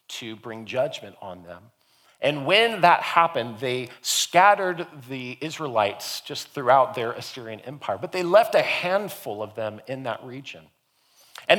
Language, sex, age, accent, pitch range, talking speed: English, male, 40-59, American, 130-185 Hz, 150 wpm